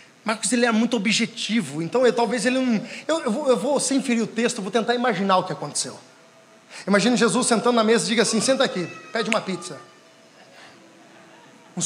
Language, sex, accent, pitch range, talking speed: Portuguese, male, Brazilian, 185-245 Hz, 200 wpm